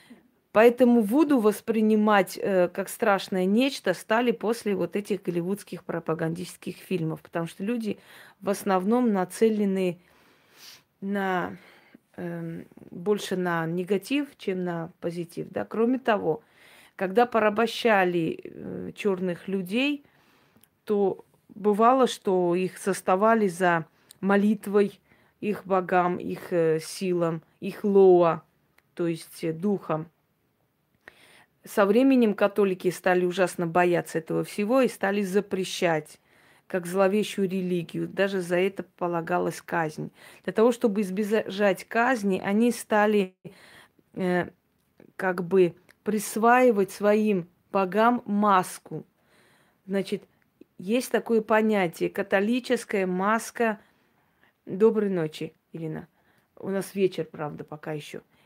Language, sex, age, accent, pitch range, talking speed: Russian, female, 20-39, native, 180-215 Hz, 105 wpm